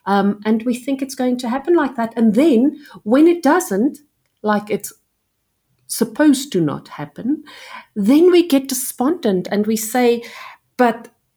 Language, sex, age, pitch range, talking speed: English, female, 50-69, 170-245 Hz, 155 wpm